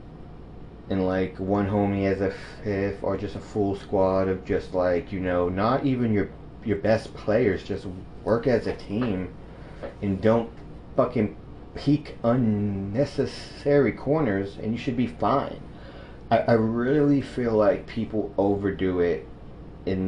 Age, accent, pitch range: 30-49, American, 95-115 Hz